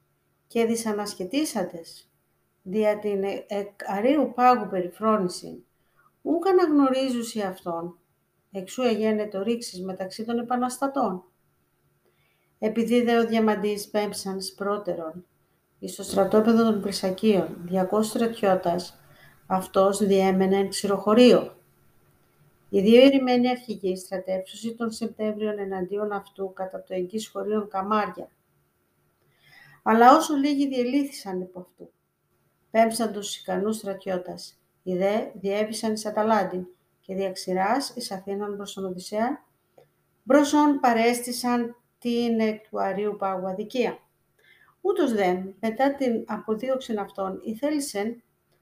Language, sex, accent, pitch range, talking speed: Greek, female, native, 185-230 Hz, 100 wpm